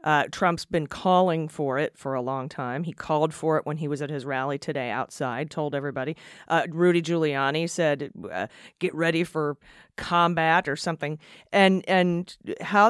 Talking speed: 175 wpm